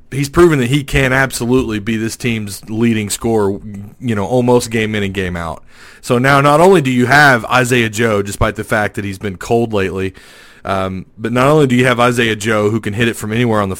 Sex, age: male, 30-49